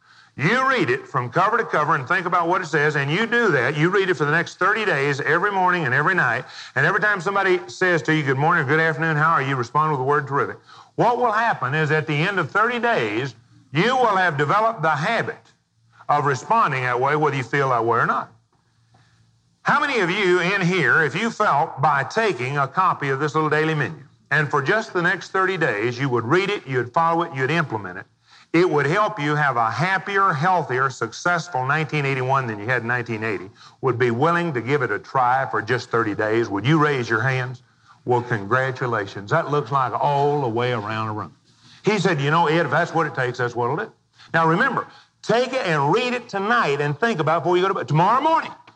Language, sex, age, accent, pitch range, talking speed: English, male, 50-69, American, 130-190 Hz, 235 wpm